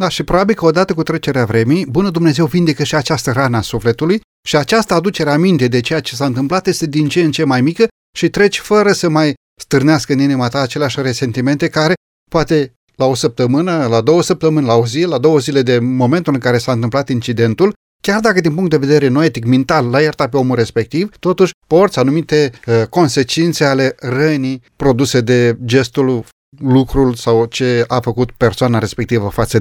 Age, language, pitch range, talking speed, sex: 30-49, Romanian, 125-175 Hz, 195 wpm, male